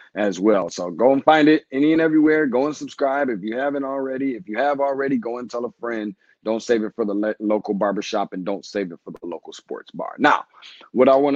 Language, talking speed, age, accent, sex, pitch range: English, 245 wpm, 20-39, American, male, 110-135 Hz